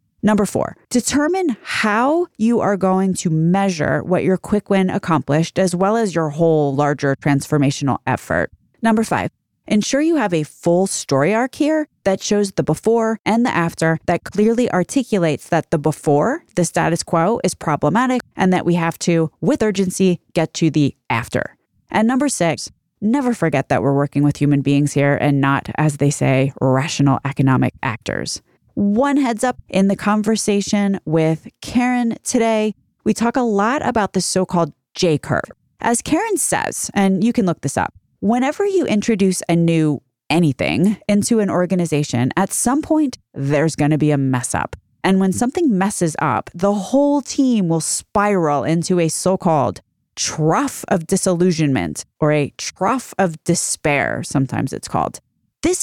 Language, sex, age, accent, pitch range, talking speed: English, female, 30-49, American, 155-220 Hz, 160 wpm